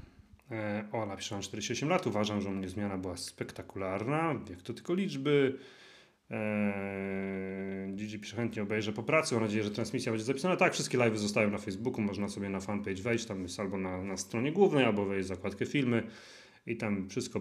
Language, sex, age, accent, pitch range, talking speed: Polish, male, 30-49, native, 100-120 Hz, 190 wpm